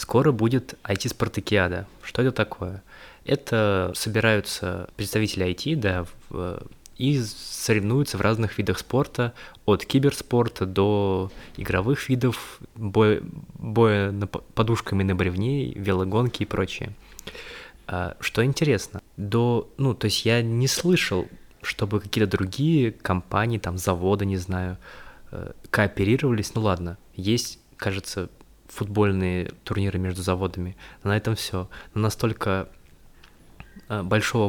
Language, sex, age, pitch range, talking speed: Russian, male, 20-39, 95-115 Hz, 115 wpm